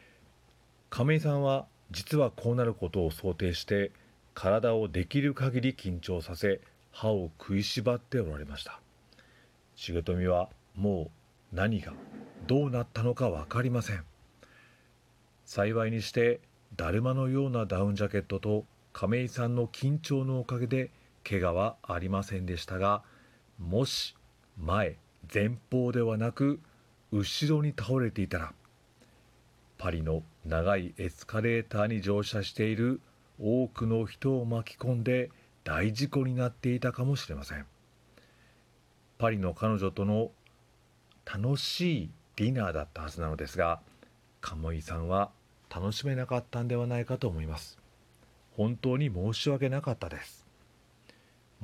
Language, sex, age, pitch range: Japanese, male, 40-59, 95-125 Hz